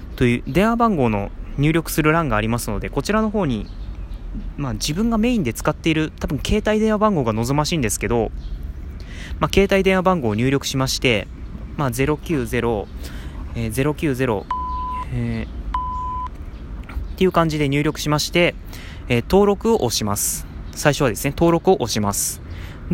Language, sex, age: Japanese, male, 20-39